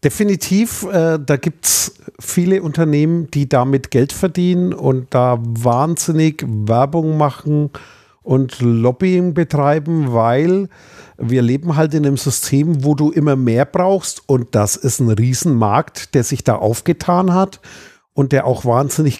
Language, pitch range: German, 130-165 Hz